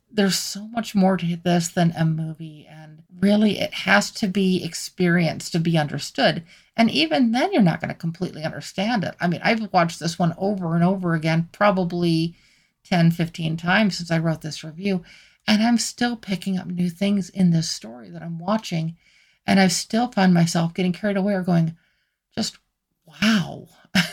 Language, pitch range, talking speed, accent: English, 170-205 Hz, 180 wpm, American